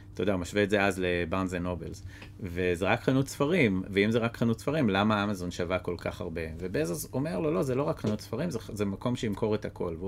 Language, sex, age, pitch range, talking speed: Hebrew, male, 30-49, 95-115 Hz, 240 wpm